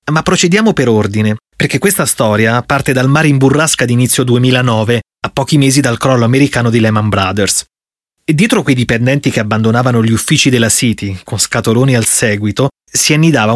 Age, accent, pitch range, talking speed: 30-49, native, 115-145 Hz, 175 wpm